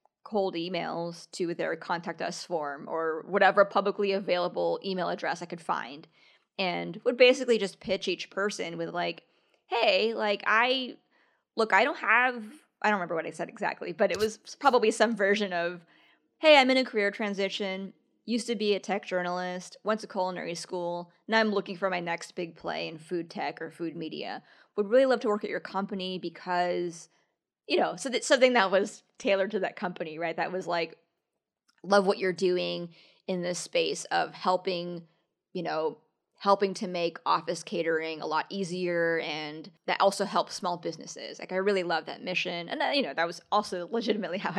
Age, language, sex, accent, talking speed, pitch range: 20-39, English, female, American, 190 wpm, 170-210 Hz